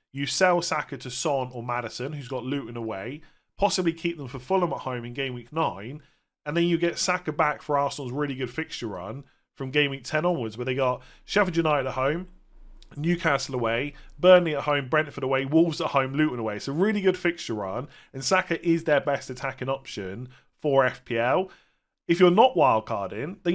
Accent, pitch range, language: British, 130-170 Hz, English